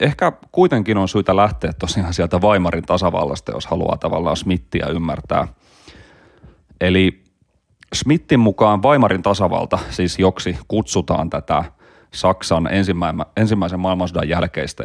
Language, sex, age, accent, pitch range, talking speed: Finnish, male, 30-49, native, 85-100 Hz, 110 wpm